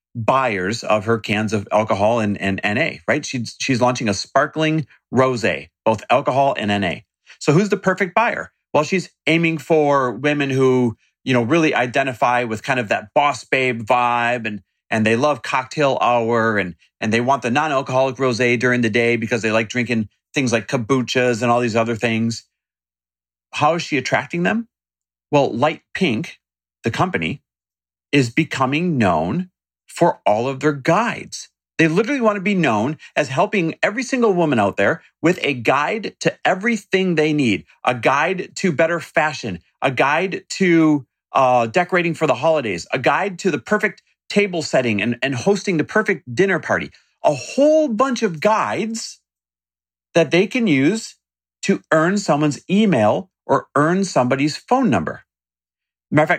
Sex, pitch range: male, 115-175 Hz